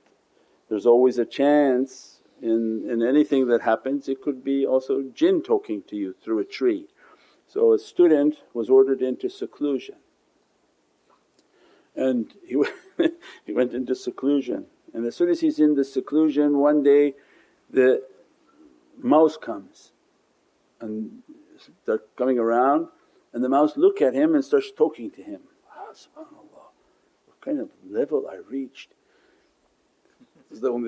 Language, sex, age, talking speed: English, male, 50-69, 140 wpm